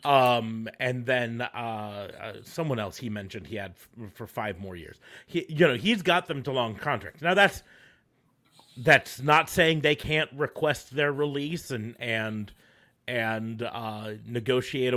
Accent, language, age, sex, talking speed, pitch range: American, English, 40-59, male, 155 wpm, 110-140 Hz